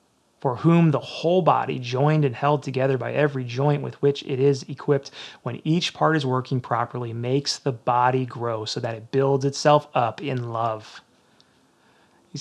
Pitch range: 135-170 Hz